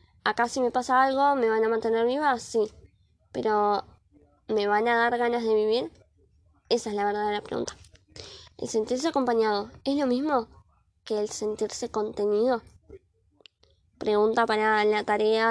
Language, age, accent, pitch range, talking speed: Spanish, 20-39, Argentinian, 215-260 Hz, 145 wpm